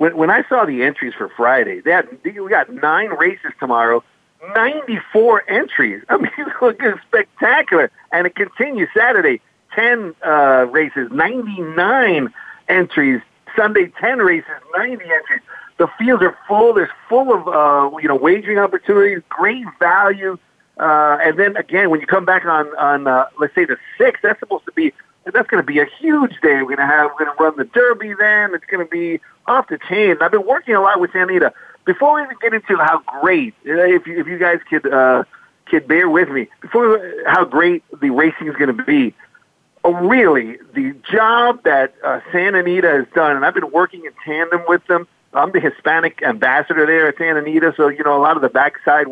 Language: English